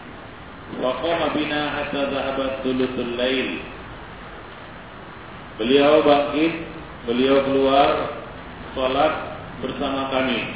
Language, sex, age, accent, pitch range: English, male, 40-59, Indonesian, 115-145 Hz